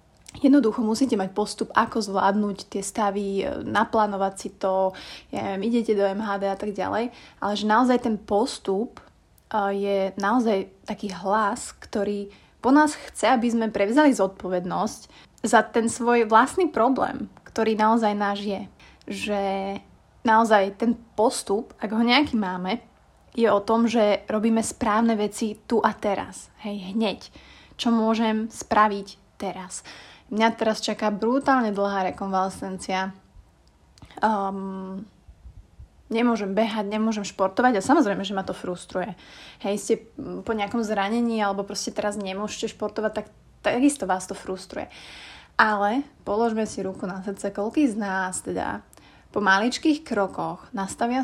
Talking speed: 135 wpm